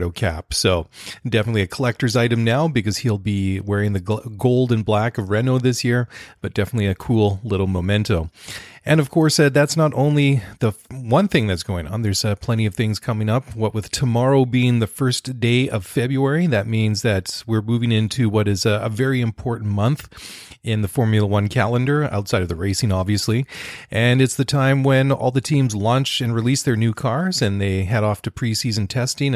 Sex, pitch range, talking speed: male, 105-130 Hz, 200 wpm